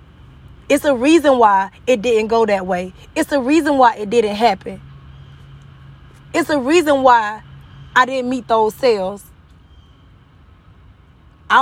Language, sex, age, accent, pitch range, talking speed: English, female, 20-39, American, 225-310 Hz, 135 wpm